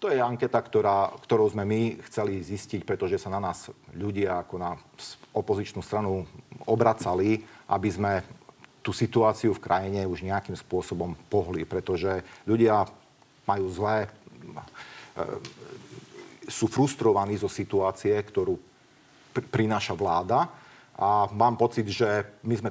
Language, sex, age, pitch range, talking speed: Slovak, male, 40-59, 100-120 Hz, 120 wpm